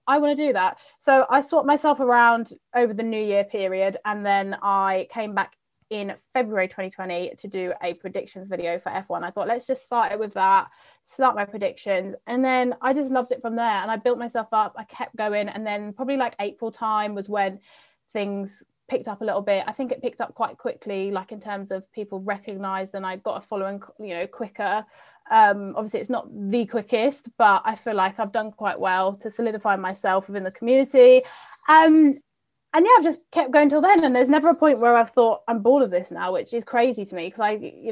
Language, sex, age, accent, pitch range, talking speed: English, female, 20-39, British, 200-255 Hz, 225 wpm